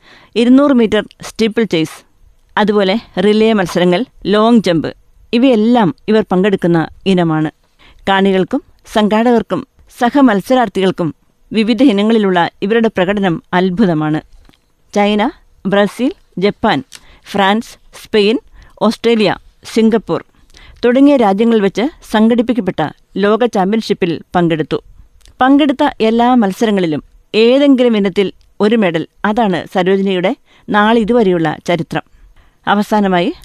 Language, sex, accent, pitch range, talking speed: Malayalam, female, native, 185-235 Hz, 85 wpm